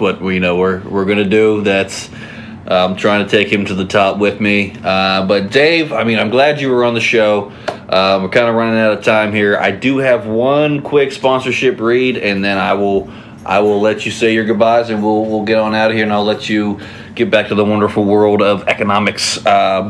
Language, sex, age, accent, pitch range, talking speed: English, male, 30-49, American, 110-130 Hz, 240 wpm